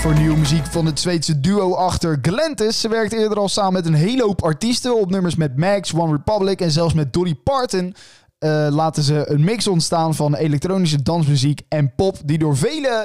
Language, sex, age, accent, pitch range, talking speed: Dutch, male, 20-39, Dutch, 155-200 Hz, 200 wpm